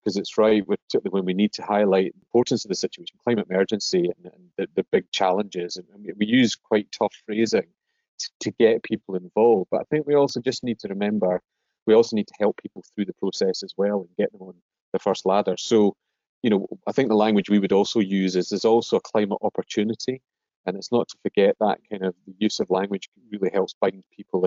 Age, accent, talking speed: 30-49, British, 230 wpm